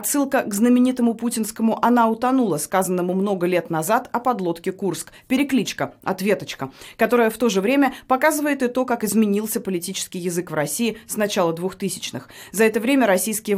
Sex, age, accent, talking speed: female, 30-49, native, 160 wpm